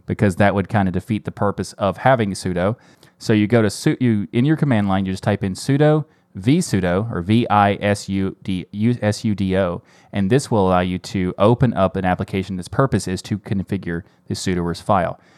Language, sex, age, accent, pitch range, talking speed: English, male, 30-49, American, 95-120 Hz, 220 wpm